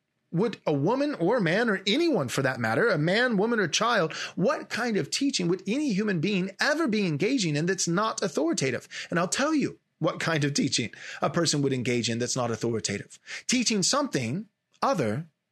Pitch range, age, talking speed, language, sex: 130-185 Hz, 30-49, 190 wpm, English, male